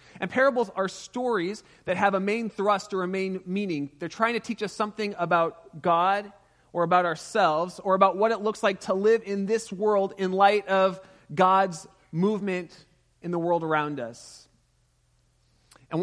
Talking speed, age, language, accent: 170 wpm, 30-49, English, American